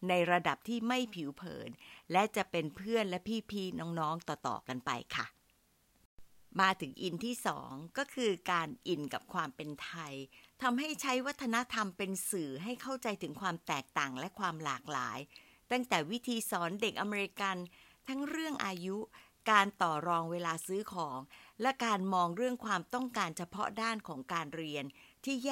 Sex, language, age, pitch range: female, Thai, 60-79, 165-235 Hz